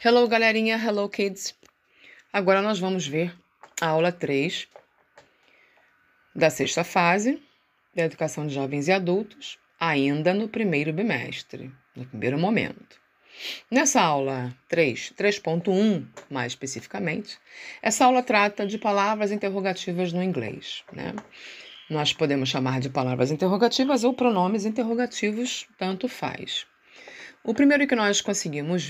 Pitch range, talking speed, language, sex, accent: 145-215 Hz, 125 wpm, Portuguese, female, Brazilian